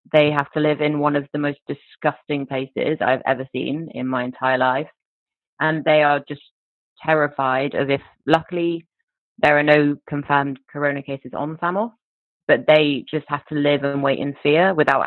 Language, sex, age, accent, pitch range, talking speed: German, female, 20-39, British, 140-160 Hz, 180 wpm